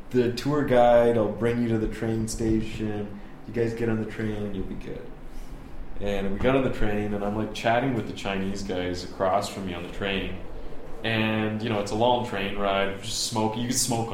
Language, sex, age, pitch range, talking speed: English, male, 20-39, 90-105 Hz, 220 wpm